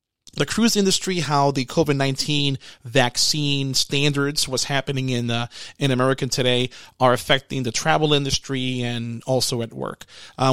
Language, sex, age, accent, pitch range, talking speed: English, male, 30-49, American, 130-150 Hz, 140 wpm